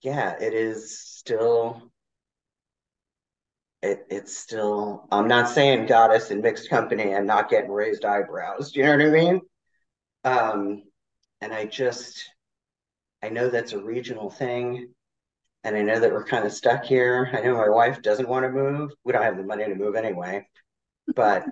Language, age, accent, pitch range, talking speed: English, 30-49, American, 95-130 Hz, 170 wpm